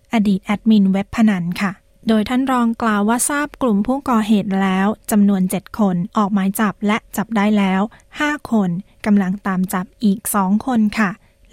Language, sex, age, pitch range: Thai, female, 20-39, 195-230 Hz